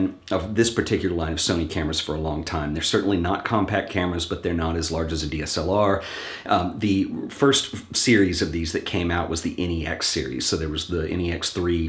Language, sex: English, male